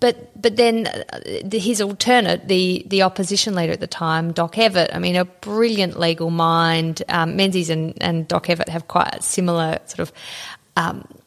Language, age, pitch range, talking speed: English, 30-49, 170-200 Hz, 175 wpm